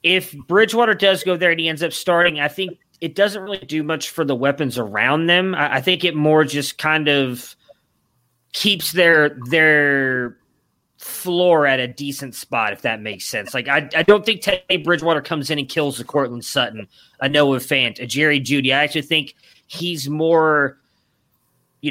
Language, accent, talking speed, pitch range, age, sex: English, American, 185 wpm, 125-160 Hz, 30-49, male